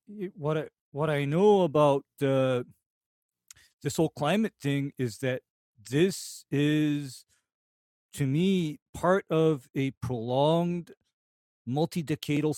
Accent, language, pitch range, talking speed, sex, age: American, English, 130-170 Hz, 105 wpm, male, 40-59